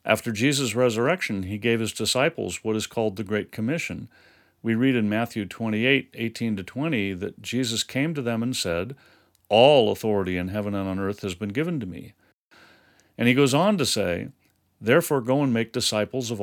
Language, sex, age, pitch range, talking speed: English, male, 50-69, 105-135 Hz, 185 wpm